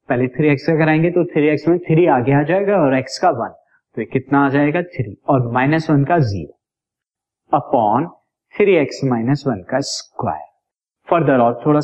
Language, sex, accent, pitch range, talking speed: Hindi, male, native, 130-170 Hz, 130 wpm